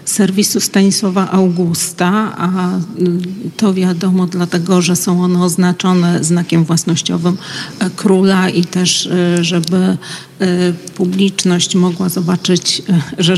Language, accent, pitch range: Polish, native, 170-185 Hz